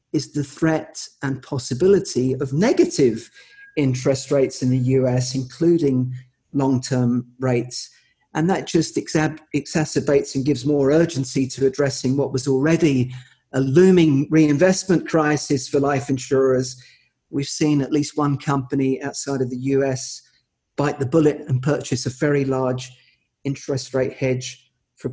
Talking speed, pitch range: 135 wpm, 130-165 Hz